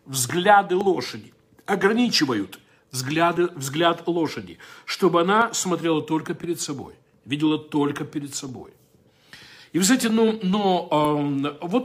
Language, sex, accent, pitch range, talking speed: Russian, male, native, 155-215 Hz, 115 wpm